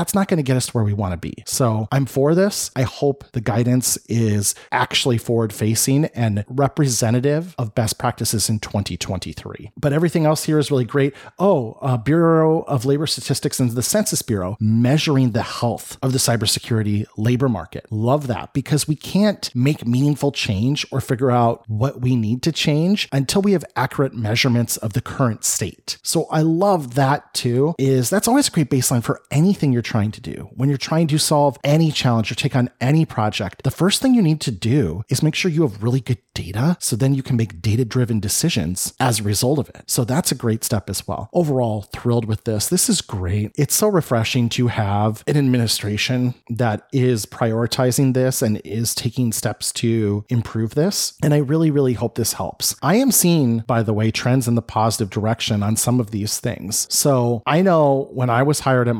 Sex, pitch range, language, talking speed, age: male, 115-145 Hz, English, 205 wpm, 30-49